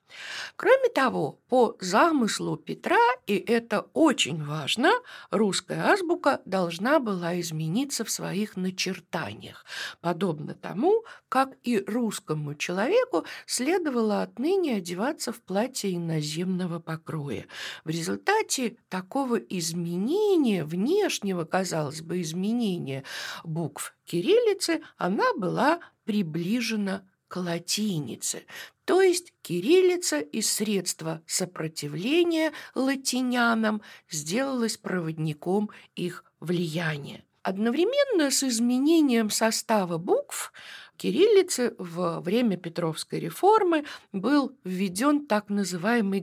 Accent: native